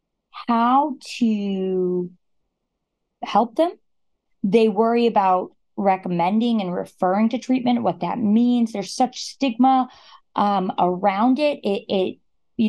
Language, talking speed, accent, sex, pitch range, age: English, 115 wpm, American, female, 195-245 Hz, 20-39